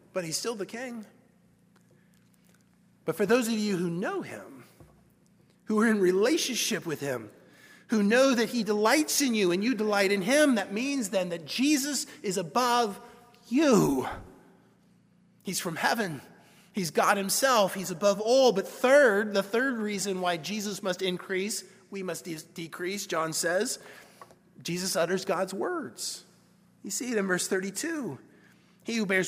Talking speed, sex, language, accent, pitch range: 150 wpm, male, English, American, 175-225 Hz